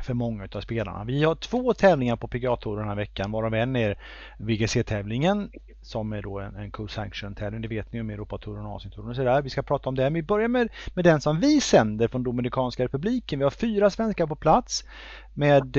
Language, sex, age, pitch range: English, male, 30-49, 110-145 Hz